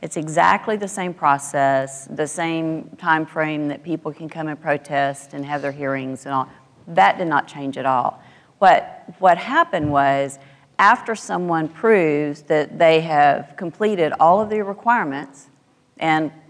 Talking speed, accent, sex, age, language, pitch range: 155 wpm, American, female, 40-59, English, 145-175 Hz